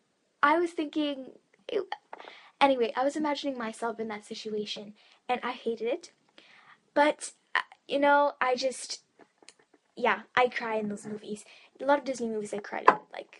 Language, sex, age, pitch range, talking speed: English, female, 10-29, 225-280 Hz, 160 wpm